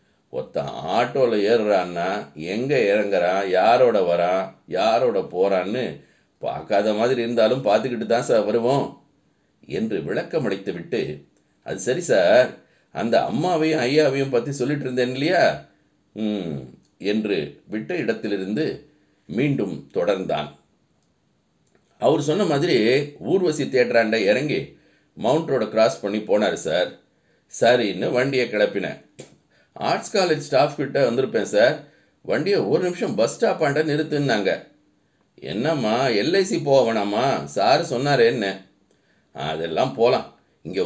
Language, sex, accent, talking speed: Tamil, male, native, 100 wpm